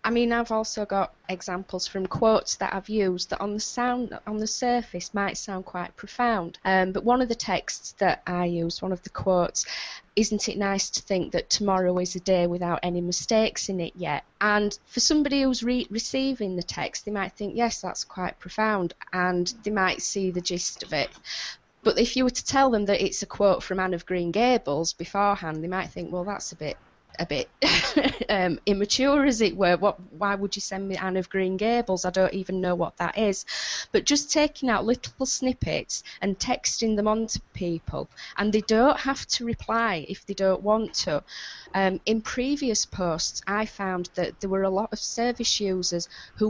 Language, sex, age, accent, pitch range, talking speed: English, female, 20-39, British, 185-225 Hz, 205 wpm